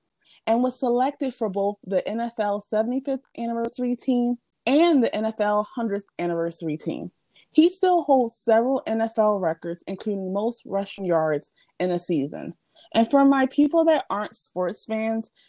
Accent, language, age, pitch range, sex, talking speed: American, English, 20-39, 170-235 Hz, female, 145 wpm